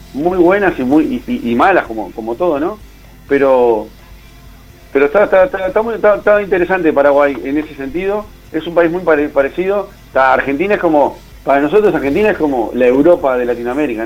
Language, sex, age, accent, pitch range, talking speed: Spanish, male, 40-59, Argentinian, 140-210 Hz, 190 wpm